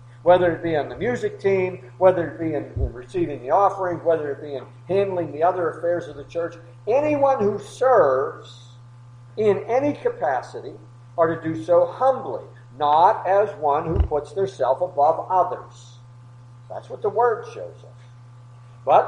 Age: 50-69